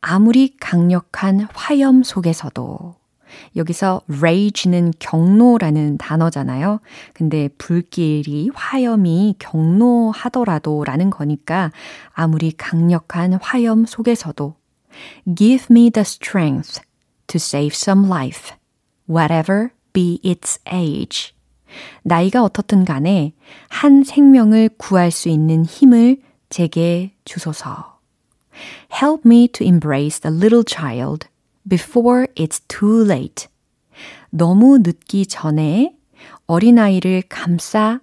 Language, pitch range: Korean, 160-220 Hz